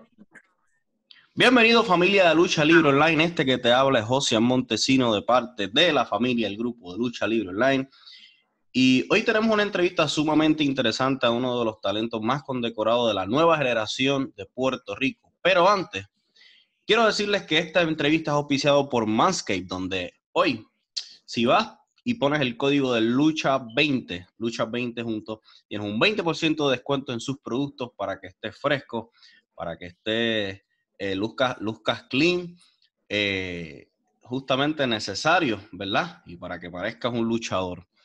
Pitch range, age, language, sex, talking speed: 105-140 Hz, 20-39, Spanish, male, 155 wpm